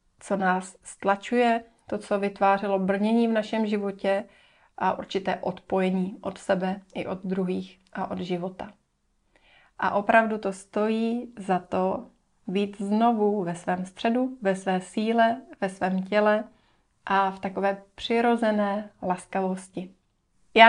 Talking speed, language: 130 wpm, Slovak